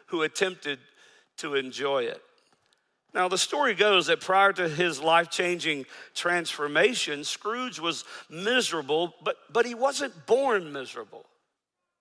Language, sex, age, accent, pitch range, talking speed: English, male, 50-69, American, 155-230 Hz, 120 wpm